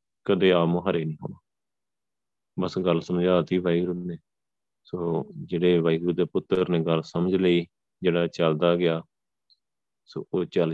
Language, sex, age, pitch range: Punjabi, male, 30-49, 85-90 Hz